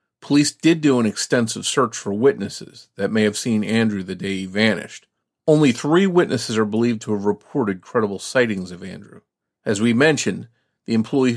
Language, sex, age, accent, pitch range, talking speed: English, male, 40-59, American, 110-135 Hz, 180 wpm